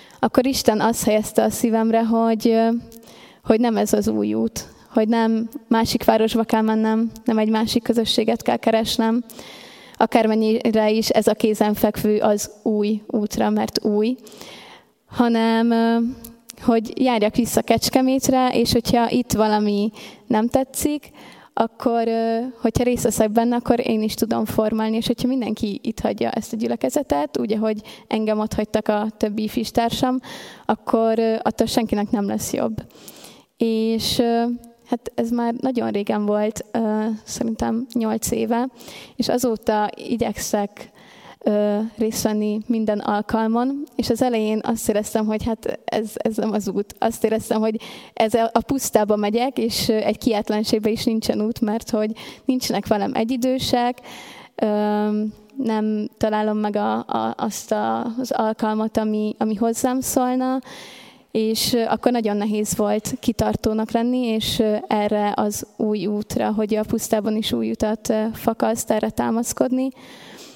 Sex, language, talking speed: female, Hungarian, 135 wpm